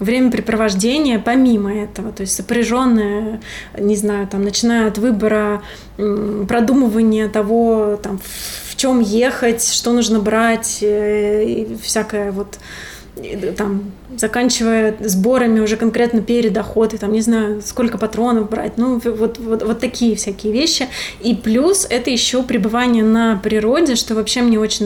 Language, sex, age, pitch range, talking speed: Russian, female, 20-39, 215-240 Hz, 135 wpm